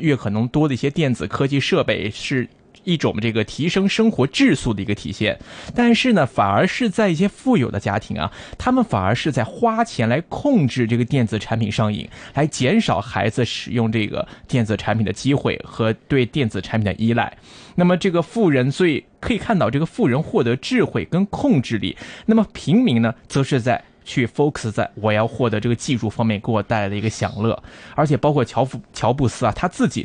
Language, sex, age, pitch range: Chinese, male, 20-39, 110-160 Hz